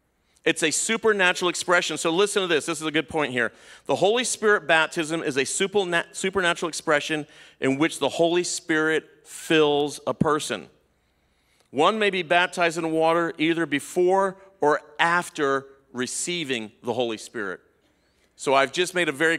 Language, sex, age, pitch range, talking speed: English, male, 40-59, 135-170 Hz, 155 wpm